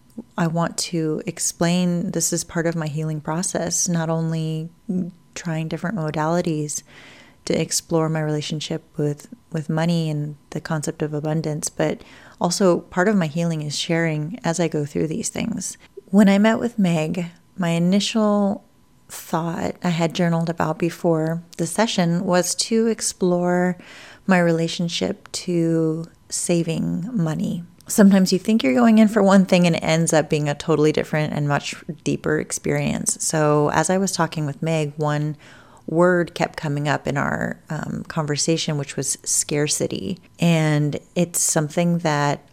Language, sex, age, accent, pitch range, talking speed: English, female, 30-49, American, 155-185 Hz, 155 wpm